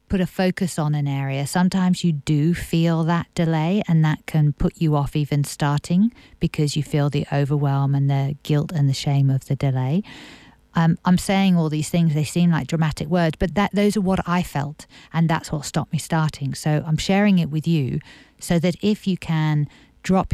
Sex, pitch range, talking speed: female, 145-175 Hz, 205 wpm